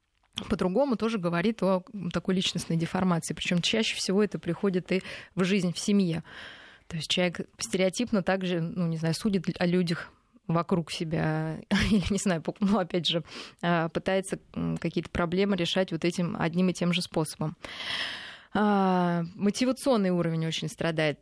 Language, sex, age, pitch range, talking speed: Russian, female, 20-39, 170-200 Hz, 140 wpm